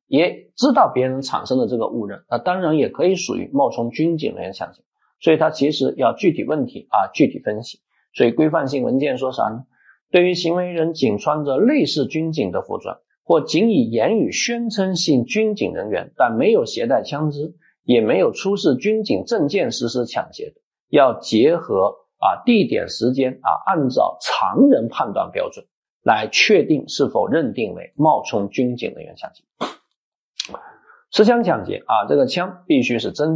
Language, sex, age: Chinese, male, 50-69